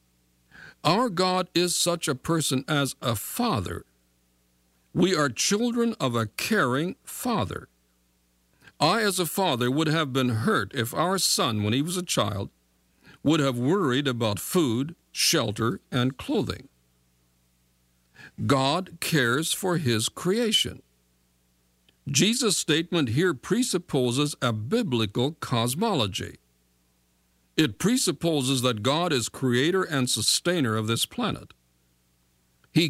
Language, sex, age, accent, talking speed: English, male, 60-79, American, 115 wpm